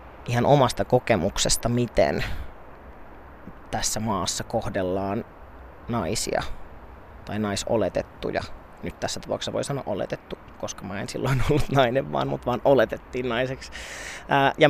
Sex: male